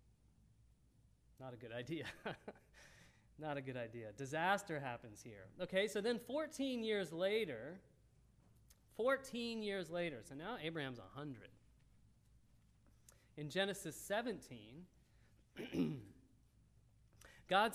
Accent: American